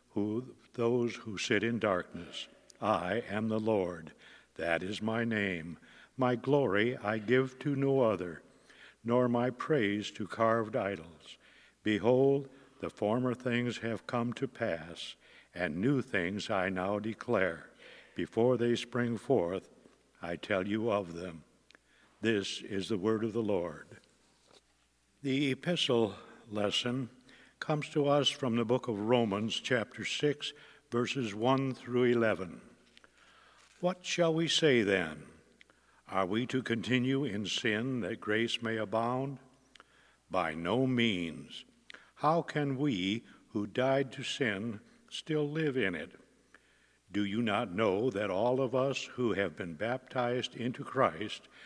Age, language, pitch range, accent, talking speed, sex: 60-79, English, 105-130 Hz, American, 135 wpm, male